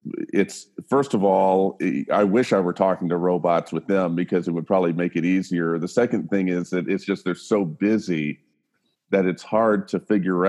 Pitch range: 90-110 Hz